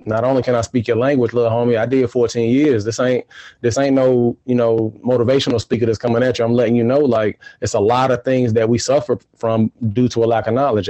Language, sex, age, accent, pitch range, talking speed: English, male, 20-39, American, 115-130 Hz, 255 wpm